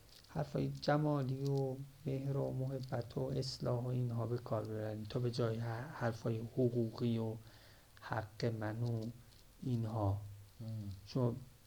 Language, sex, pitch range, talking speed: Persian, male, 115-135 Hz, 125 wpm